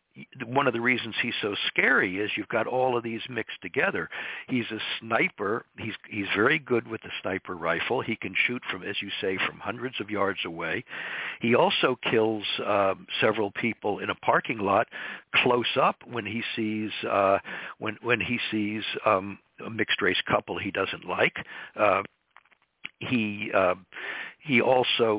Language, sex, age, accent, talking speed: English, male, 60-79, American, 180 wpm